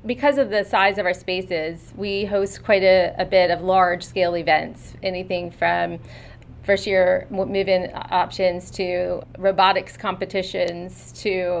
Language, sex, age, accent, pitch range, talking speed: English, female, 30-49, American, 180-205 Hz, 130 wpm